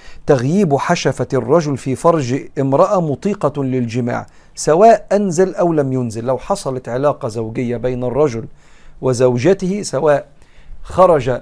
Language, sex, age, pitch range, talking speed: Arabic, male, 50-69, 125-150 Hz, 115 wpm